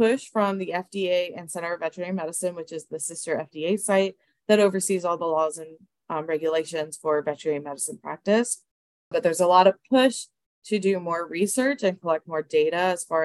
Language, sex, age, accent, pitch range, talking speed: English, female, 20-39, American, 160-200 Hz, 195 wpm